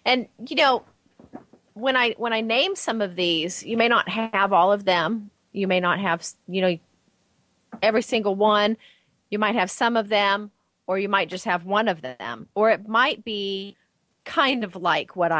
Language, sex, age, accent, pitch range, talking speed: English, female, 30-49, American, 175-215 Hz, 190 wpm